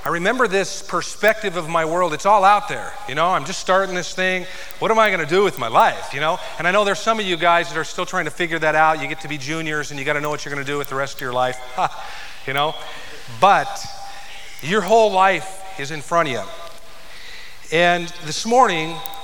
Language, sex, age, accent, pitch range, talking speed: English, male, 40-59, American, 155-190 Hz, 240 wpm